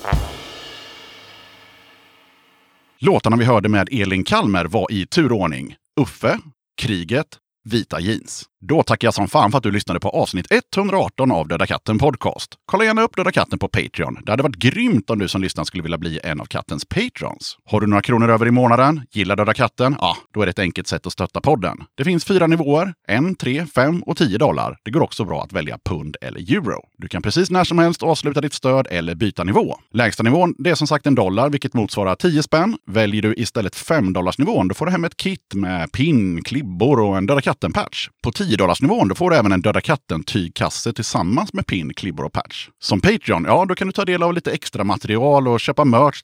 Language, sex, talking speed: Swedish, male, 215 wpm